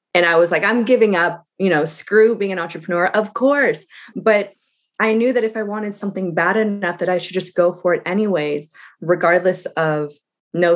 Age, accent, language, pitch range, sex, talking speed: 20-39, American, English, 160-215 Hz, female, 200 wpm